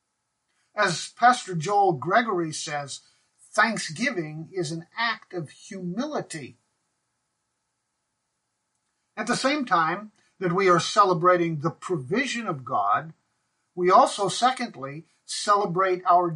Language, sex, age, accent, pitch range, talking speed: English, male, 50-69, American, 160-220 Hz, 105 wpm